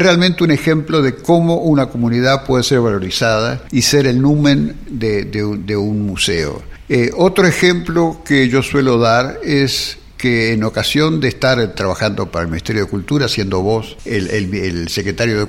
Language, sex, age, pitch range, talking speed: Spanish, male, 60-79, 110-145 Hz, 170 wpm